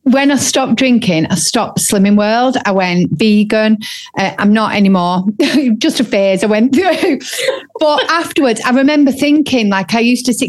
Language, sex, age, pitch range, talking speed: English, female, 40-59, 195-265 Hz, 175 wpm